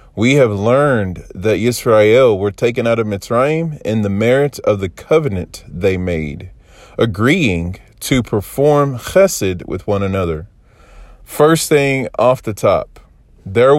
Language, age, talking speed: English, 30-49, 135 wpm